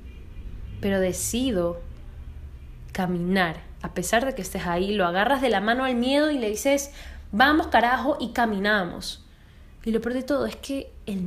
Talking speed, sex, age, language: 165 wpm, female, 10-29, Spanish